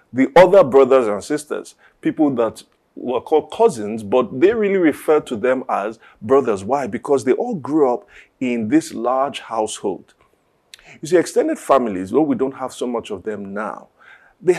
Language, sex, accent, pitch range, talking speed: English, male, Nigerian, 110-165 Hz, 175 wpm